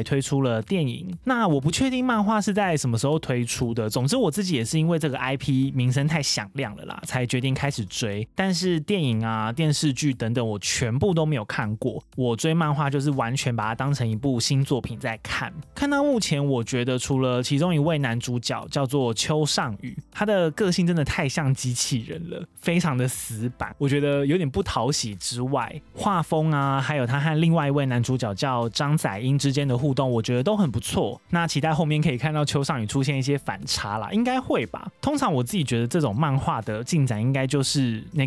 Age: 20-39